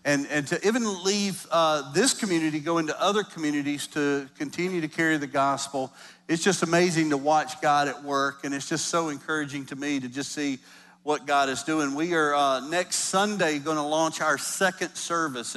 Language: English